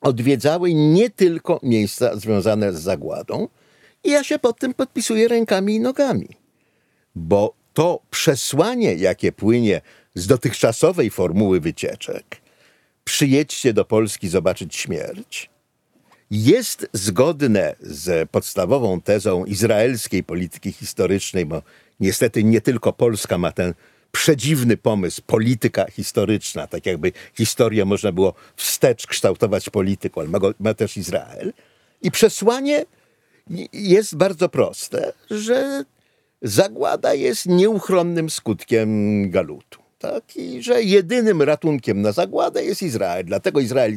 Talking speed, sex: 115 wpm, male